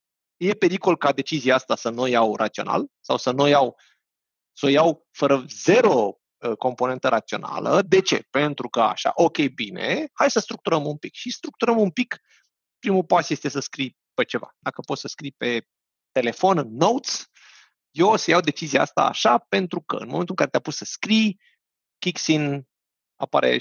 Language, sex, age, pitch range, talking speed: Romanian, male, 30-49, 130-185 Hz, 175 wpm